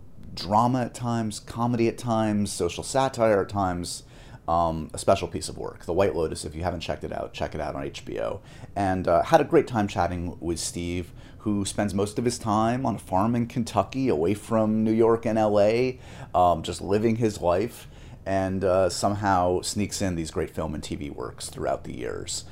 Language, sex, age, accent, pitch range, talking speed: English, male, 30-49, American, 90-120 Hz, 200 wpm